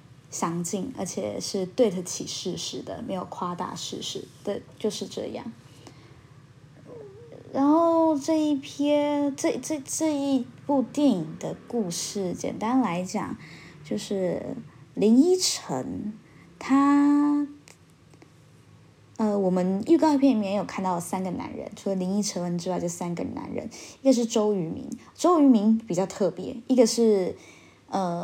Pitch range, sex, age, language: 175-235 Hz, female, 20-39, Chinese